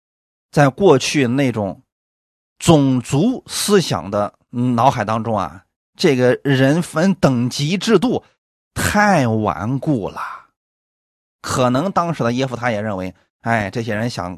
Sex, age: male, 30-49